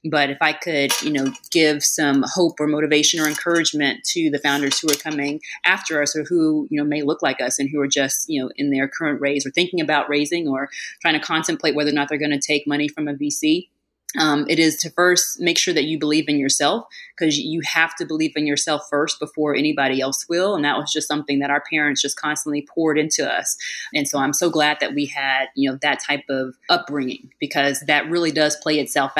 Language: English